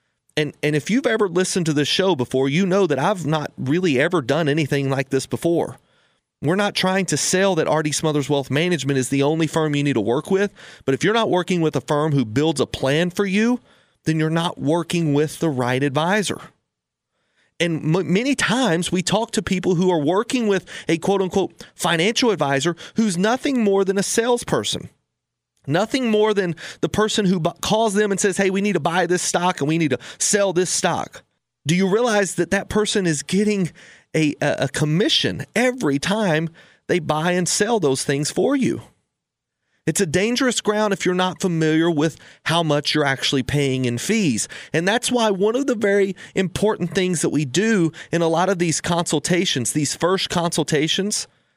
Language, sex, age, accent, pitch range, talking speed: English, male, 30-49, American, 150-200 Hz, 195 wpm